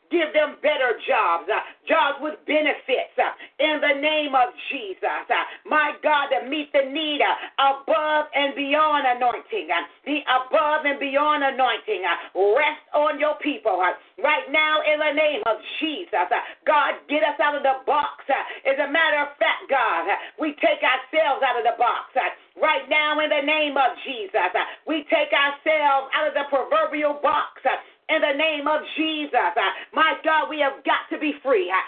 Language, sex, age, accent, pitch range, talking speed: English, female, 40-59, American, 285-315 Hz, 185 wpm